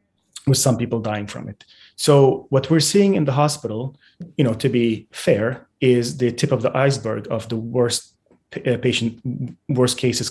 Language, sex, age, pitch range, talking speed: English, male, 30-49, 110-135 Hz, 180 wpm